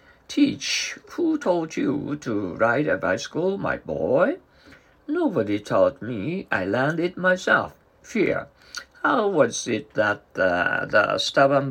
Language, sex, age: Japanese, male, 60-79